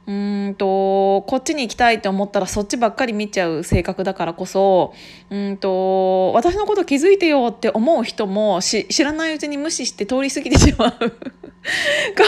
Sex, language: female, Japanese